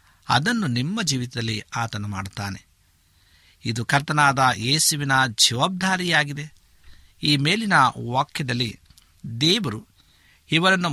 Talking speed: 75 wpm